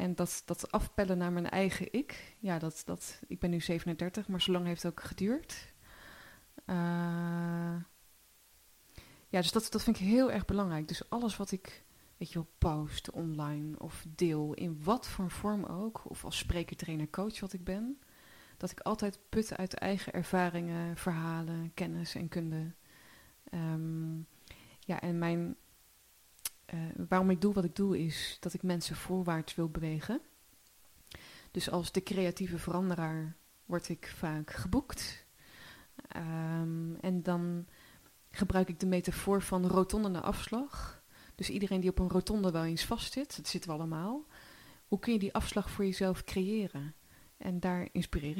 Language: Dutch